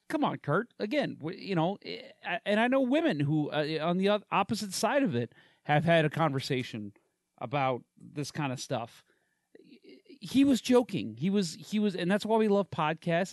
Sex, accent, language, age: male, American, English, 30-49